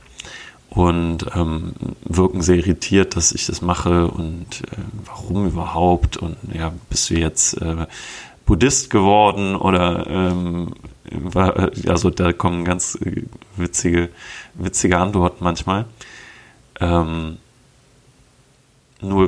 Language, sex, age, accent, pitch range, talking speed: German, male, 30-49, German, 85-100 Hz, 105 wpm